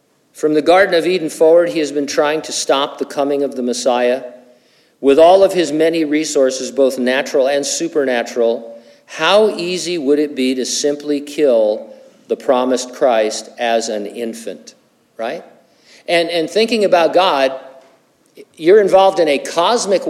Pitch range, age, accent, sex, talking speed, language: 125-165 Hz, 50-69, American, male, 155 wpm, English